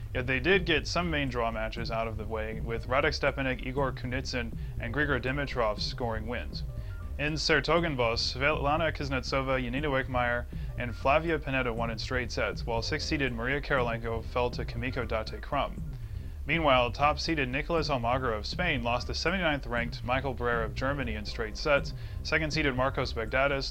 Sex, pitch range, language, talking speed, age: male, 115-140 Hz, English, 160 wpm, 30-49